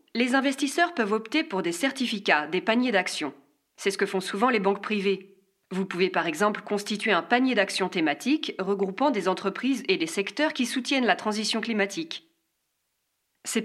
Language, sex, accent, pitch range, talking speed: French, female, French, 190-270 Hz, 170 wpm